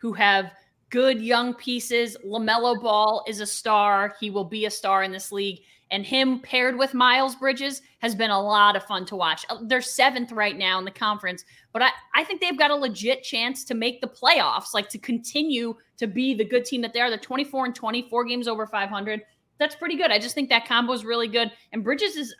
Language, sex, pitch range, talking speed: English, female, 215-265 Hz, 220 wpm